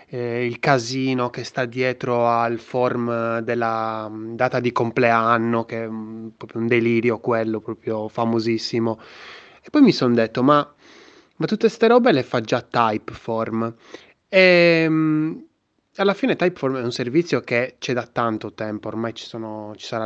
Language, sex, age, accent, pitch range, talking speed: Italian, male, 20-39, native, 115-150 Hz, 150 wpm